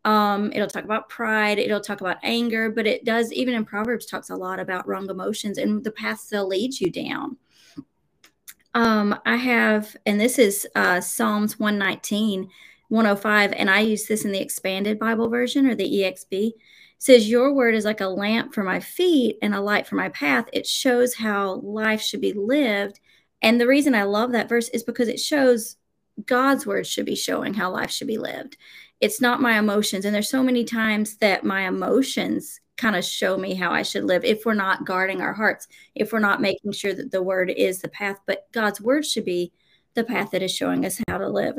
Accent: American